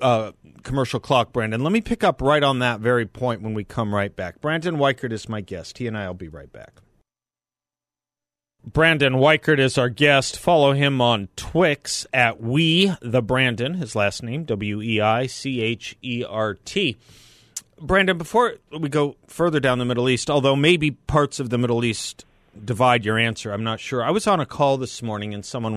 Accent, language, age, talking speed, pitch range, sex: American, English, 30-49, 200 wpm, 110-135 Hz, male